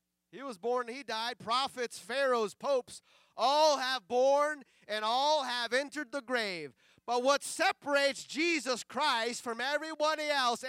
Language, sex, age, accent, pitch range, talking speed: English, male, 30-49, American, 280-345 Hz, 145 wpm